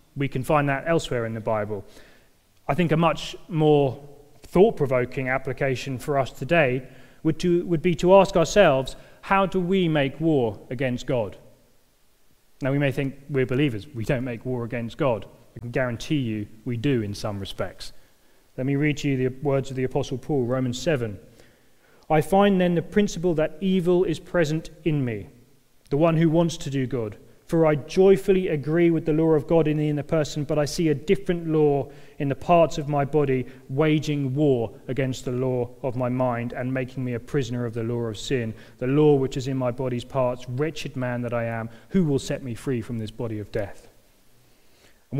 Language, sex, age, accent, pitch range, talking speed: English, male, 30-49, British, 125-155 Hz, 200 wpm